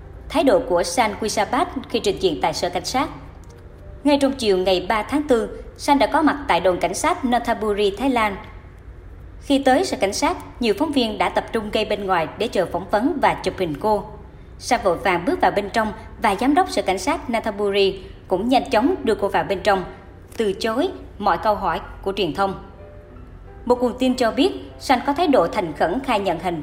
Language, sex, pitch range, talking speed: Vietnamese, male, 190-275 Hz, 215 wpm